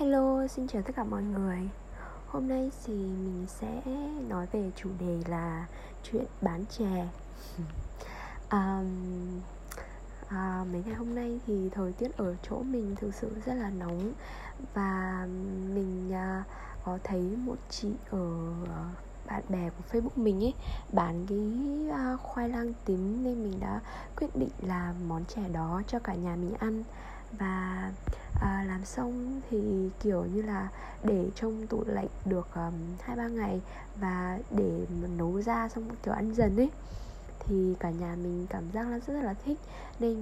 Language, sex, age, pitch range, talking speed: Vietnamese, female, 20-39, 180-235 Hz, 160 wpm